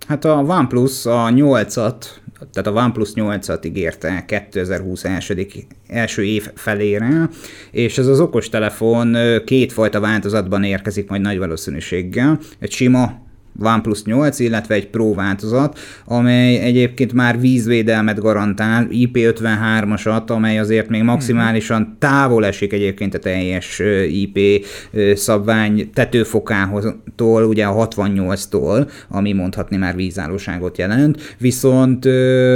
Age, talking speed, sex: 30-49, 110 wpm, male